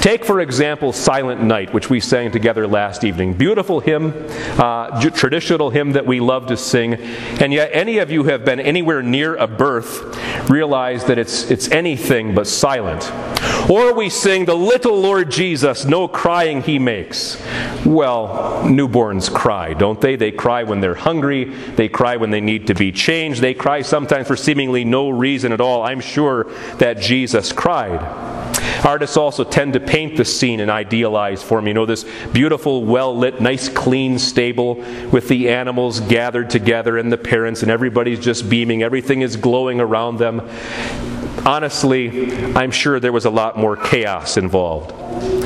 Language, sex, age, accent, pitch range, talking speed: English, male, 40-59, American, 115-140 Hz, 170 wpm